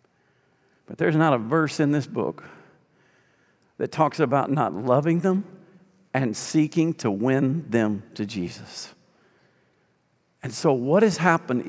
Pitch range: 145-195 Hz